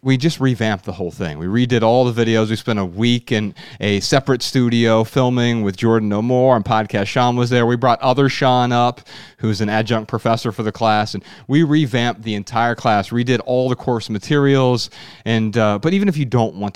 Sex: male